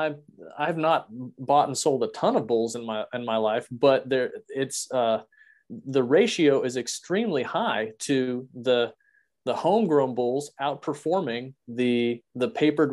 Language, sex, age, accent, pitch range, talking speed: English, male, 30-49, American, 115-155 Hz, 155 wpm